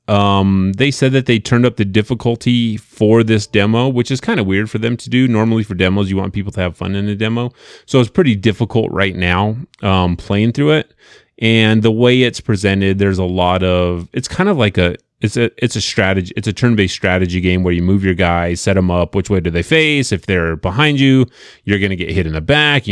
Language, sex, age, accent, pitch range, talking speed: English, male, 30-49, American, 90-115 Hz, 240 wpm